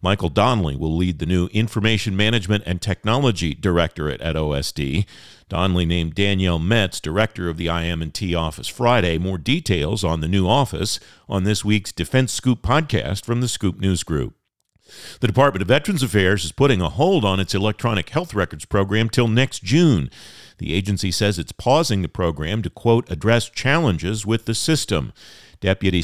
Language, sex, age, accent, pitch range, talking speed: English, male, 50-69, American, 90-120 Hz, 170 wpm